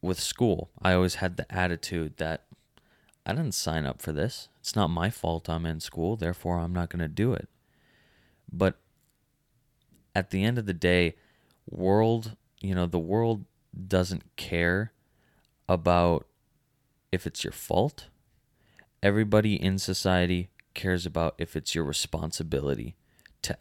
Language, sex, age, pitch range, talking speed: English, male, 20-39, 85-105 Hz, 145 wpm